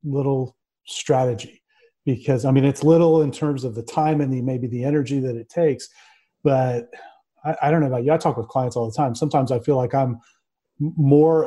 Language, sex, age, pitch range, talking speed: English, male, 40-59, 125-155 Hz, 210 wpm